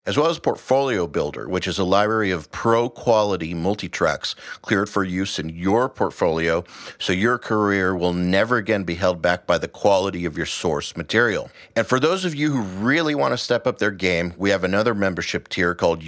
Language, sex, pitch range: English, male, 90-110 Hz